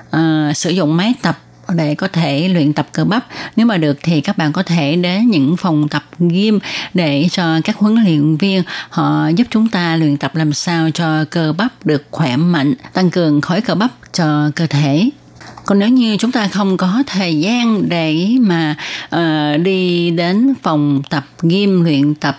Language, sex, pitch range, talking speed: Vietnamese, female, 150-195 Hz, 190 wpm